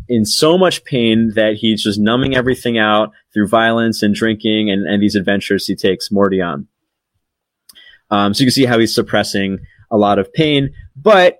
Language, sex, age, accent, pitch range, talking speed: English, male, 30-49, American, 100-125 Hz, 185 wpm